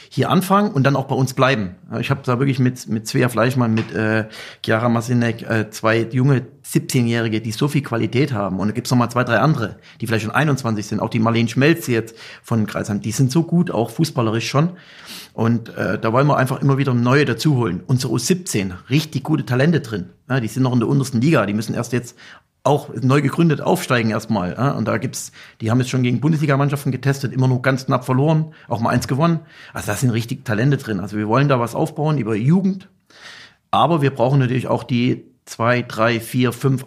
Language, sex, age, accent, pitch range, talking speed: German, male, 40-59, German, 115-140 Hz, 215 wpm